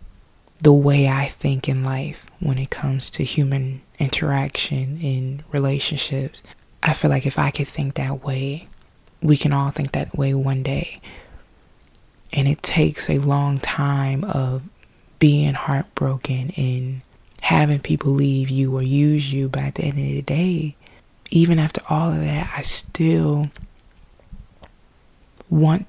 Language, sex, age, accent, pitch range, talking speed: English, female, 20-39, American, 140-155 Hz, 145 wpm